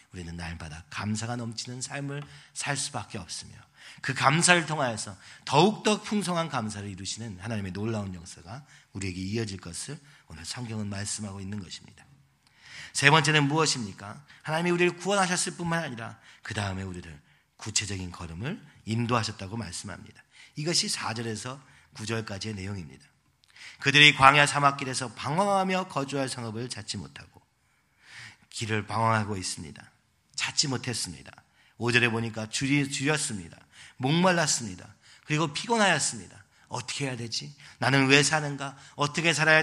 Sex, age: male, 40-59